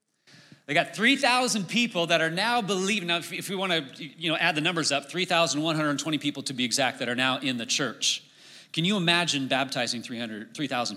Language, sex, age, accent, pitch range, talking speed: English, male, 30-49, American, 140-185 Hz, 180 wpm